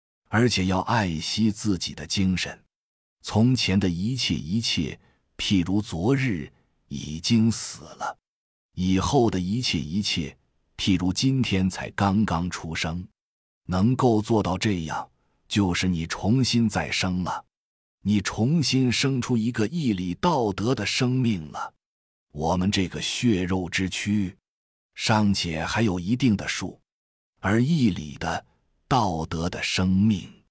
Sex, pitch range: male, 90-120 Hz